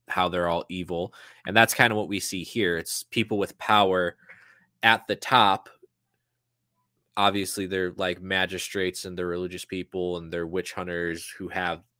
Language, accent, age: English, American, 20-39